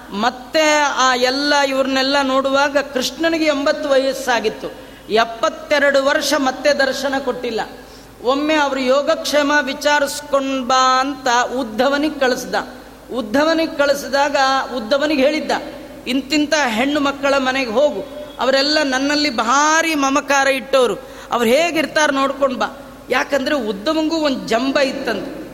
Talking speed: 105 wpm